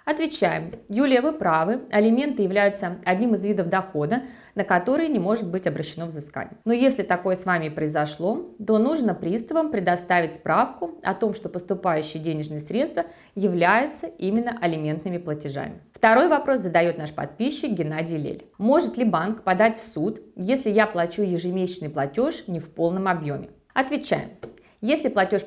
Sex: female